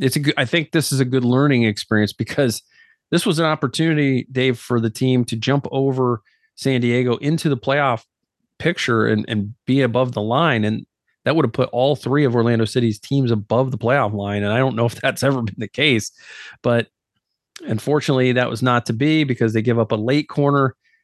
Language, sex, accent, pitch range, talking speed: English, male, American, 115-140 Hz, 210 wpm